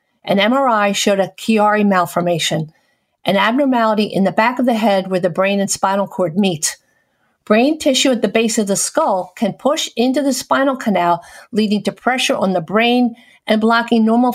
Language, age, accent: English, 50-69, American